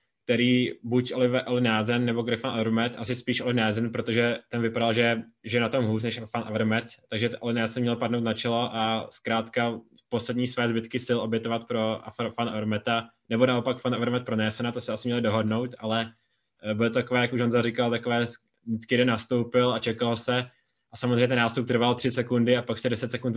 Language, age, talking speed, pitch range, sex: Czech, 20-39, 200 wpm, 110-120 Hz, male